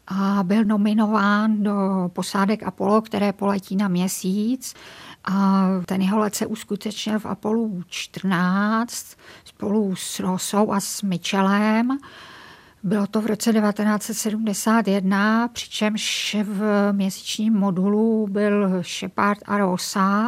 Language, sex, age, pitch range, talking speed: Czech, female, 50-69, 190-210 Hz, 110 wpm